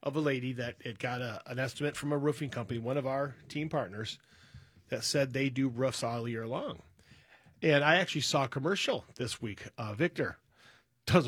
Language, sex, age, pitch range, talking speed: English, male, 40-59, 120-150 Hz, 195 wpm